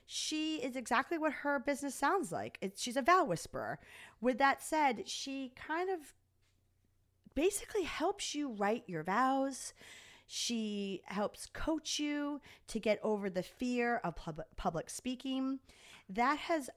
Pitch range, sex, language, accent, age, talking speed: 180-265 Hz, female, English, American, 30-49, 135 wpm